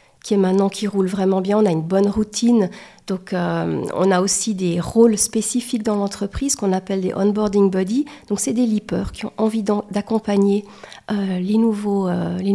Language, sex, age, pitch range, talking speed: French, female, 40-59, 190-220 Hz, 205 wpm